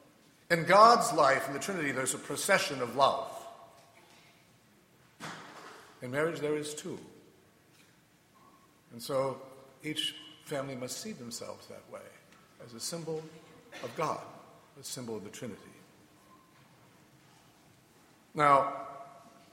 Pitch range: 125-160 Hz